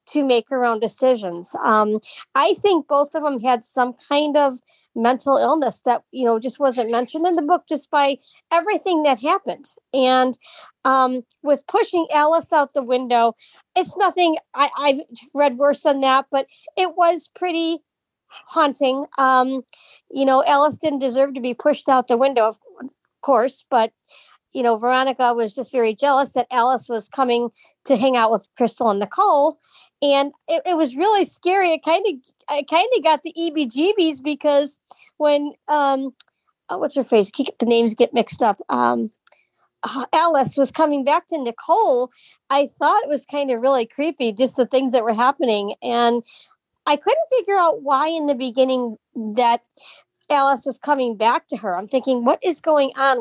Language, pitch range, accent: English, 250-315 Hz, American